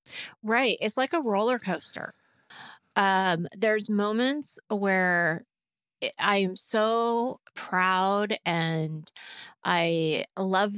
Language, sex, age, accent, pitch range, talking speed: English, female, 30-49, American, 175-220 Hz, 90 wpm